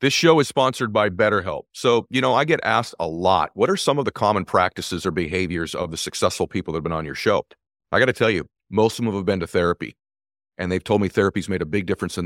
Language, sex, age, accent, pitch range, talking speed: English, male, 40-59, American, 90-120 Hz, 270 wpm